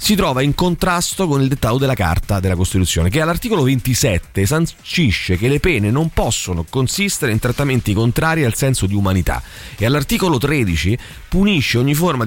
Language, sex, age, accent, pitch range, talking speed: Italian, male, 30-49, native, 105-165 Hz, 165 wpm